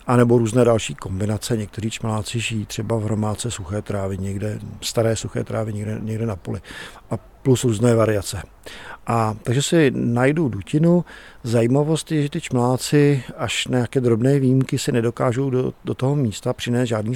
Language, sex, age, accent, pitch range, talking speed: Czech, male, 50-69, native, 110-125 Hz, 170 wpm